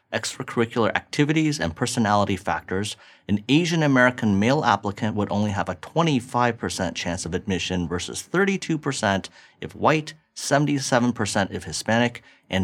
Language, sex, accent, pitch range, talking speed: English, male, American, 95-130 Hz, 125 wpm